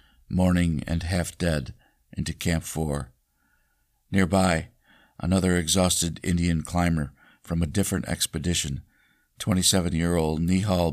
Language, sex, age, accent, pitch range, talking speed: English, male, 50-69, American, 75-90 Hz, 95 wpm